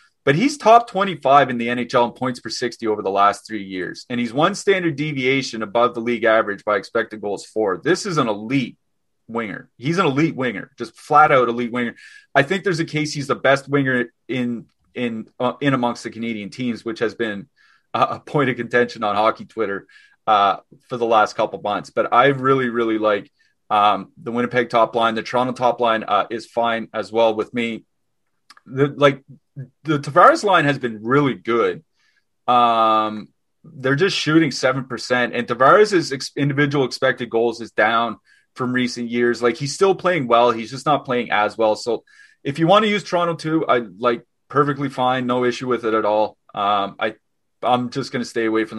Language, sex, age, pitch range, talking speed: English, male, 30-49, 115-140 Hz, 200 wpm